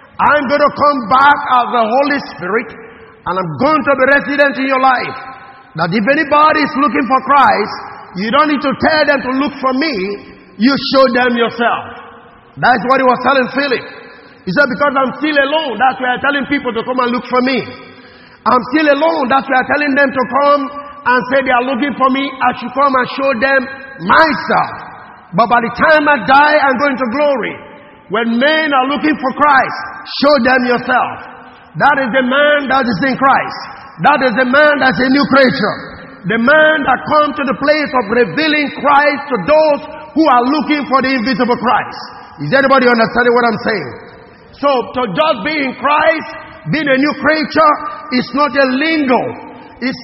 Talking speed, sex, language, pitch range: 195 wpm, male, English, 250-290 Hz